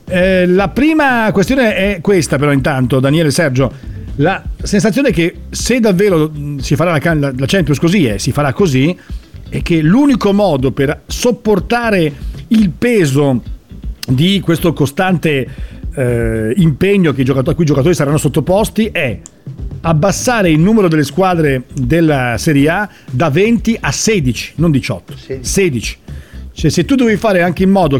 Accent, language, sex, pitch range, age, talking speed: native, Italian, male, 140-195 Hz, 50-69, 150 wpm